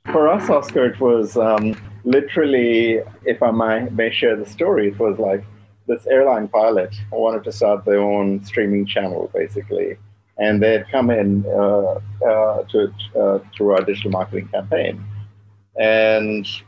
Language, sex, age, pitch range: Chinese, male, 50-69, 100-120 Hz